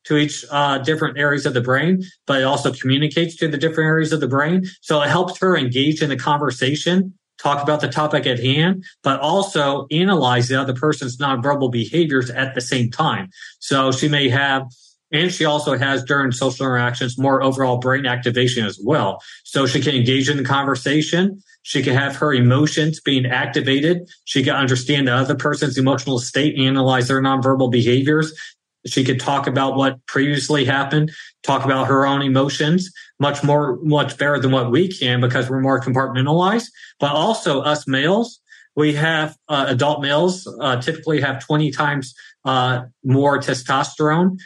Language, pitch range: English, 130-155 Hz